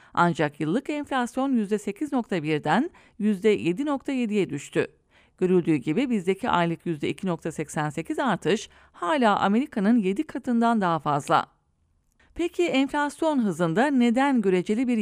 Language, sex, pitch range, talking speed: English, female, 175-260 Hz, 95 wpm